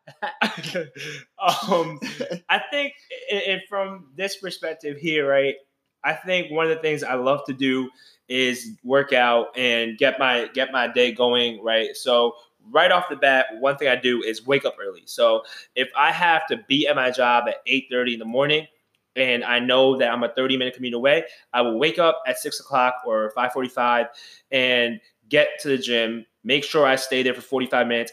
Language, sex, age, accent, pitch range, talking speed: English, male, 20-39, American, 125-150 Hz, 185 wpm